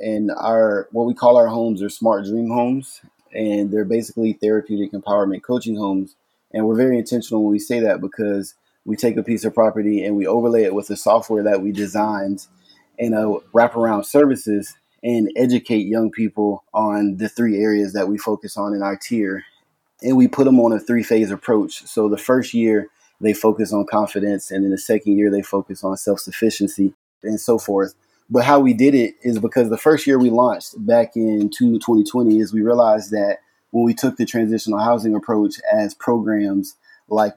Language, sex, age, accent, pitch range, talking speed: English, male, 30-49, American, 105-115 Hz, 190 wpm